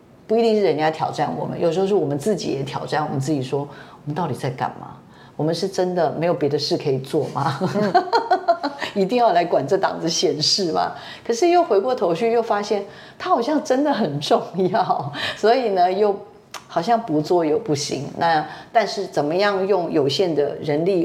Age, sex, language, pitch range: 40-59, female, Chinese, 150-195 Hz